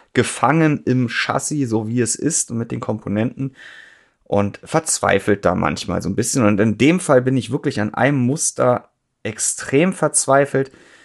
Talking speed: 165 wpm